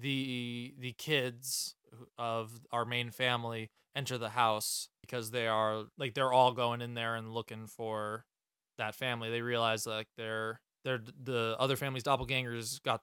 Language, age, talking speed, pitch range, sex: English, 20-39, 160 wpm, 115-140 Hz, male